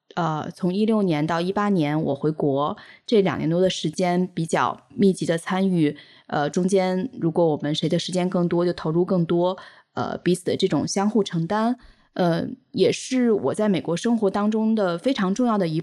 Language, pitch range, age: Chinese, 170-210 Hz, 20-39